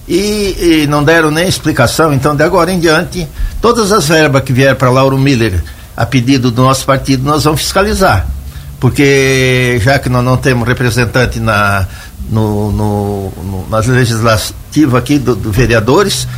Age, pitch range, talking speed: 60-79, 120-155 Hz, 145 wpm